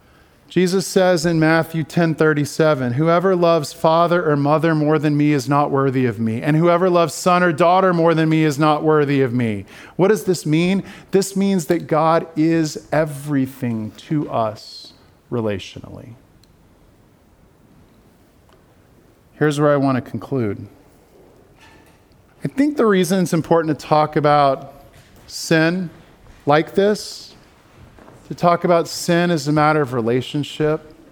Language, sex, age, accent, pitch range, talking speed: English, male, 40-59, American, 135-170 Hz, 140 wpm